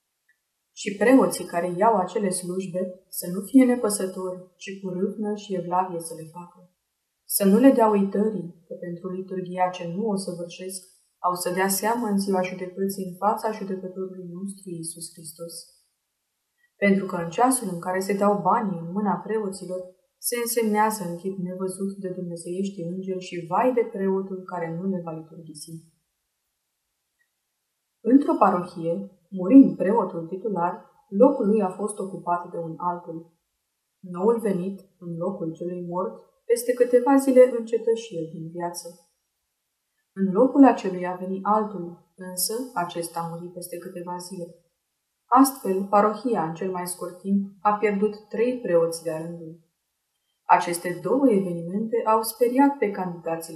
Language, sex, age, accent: Romanian, female, 20-39, native